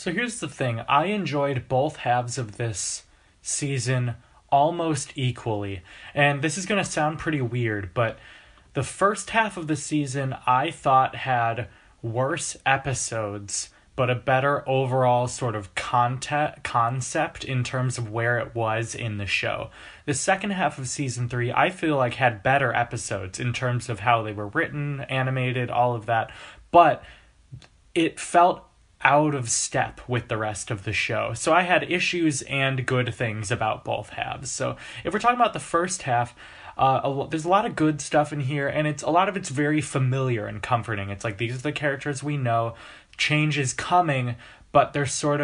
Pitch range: 115-145 Hz